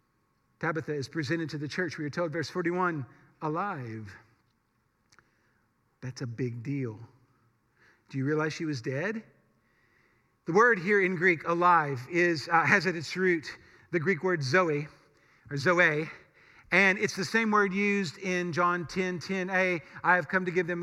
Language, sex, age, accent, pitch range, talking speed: English, male, 50-69, American, 155-205 Hz, 165 wpm